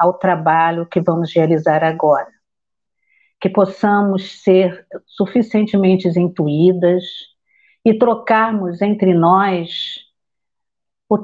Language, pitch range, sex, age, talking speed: Portuguese, 170-200 Hz, female, 50-69, 85 wpm